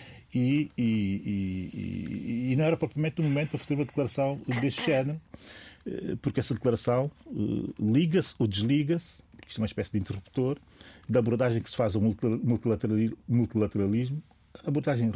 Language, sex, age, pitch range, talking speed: Portuguese, male, 40-59, 105-135 Hz, 145 wpm